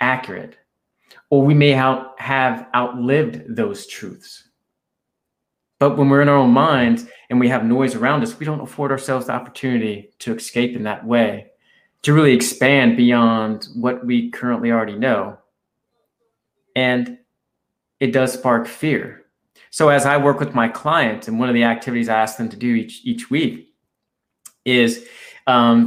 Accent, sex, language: American, male, English